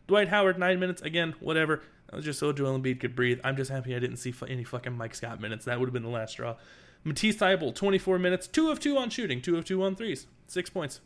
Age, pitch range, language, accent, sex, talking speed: 20-39, 120-175 Hz, English, American, male, 260 wpm